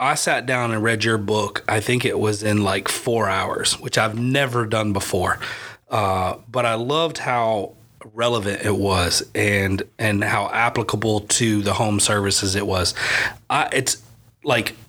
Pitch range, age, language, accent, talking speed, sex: 110-135 Hz, 30-49, English, American, 165 wpm, male